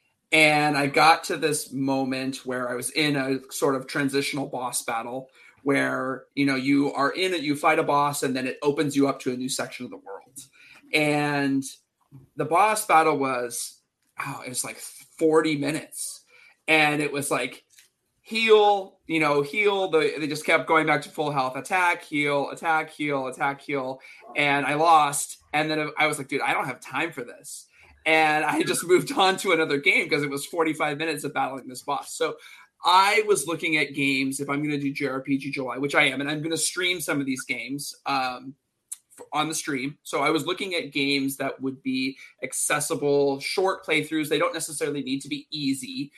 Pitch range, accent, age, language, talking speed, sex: 135-160 Hz, American, 30-49, English, 200 wpm, male